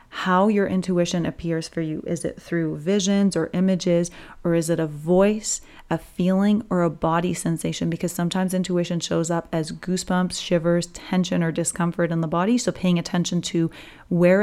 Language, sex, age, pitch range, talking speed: English, female, 30-49, 165-190 Hz, 175 wpm